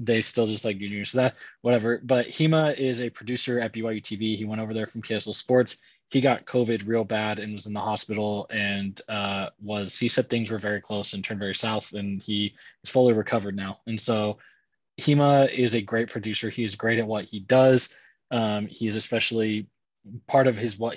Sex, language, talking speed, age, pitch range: male, English, 205 wpm, 20-39, 105-115 Hz